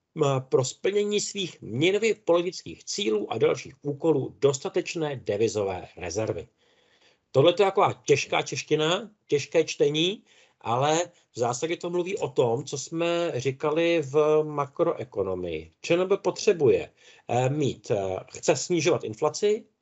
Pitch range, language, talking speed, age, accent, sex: 135-185 Hz, Czech, 110 wpm, 50-69, native, male